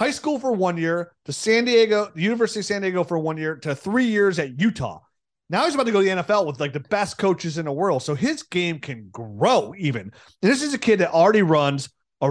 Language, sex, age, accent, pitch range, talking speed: English, male, 30-49, American, 140-190 Hz, 250 wpm